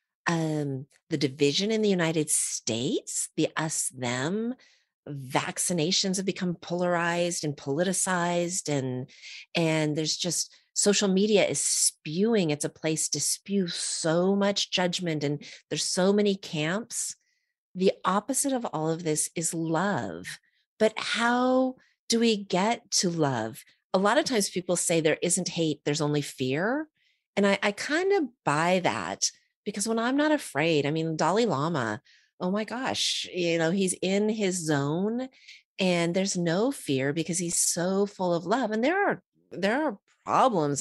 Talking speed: 155 wpm